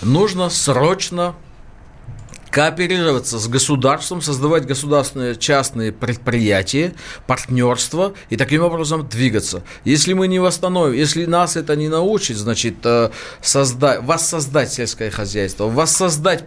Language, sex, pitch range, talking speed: Russian, male, 130-165 Hz, 105 wpm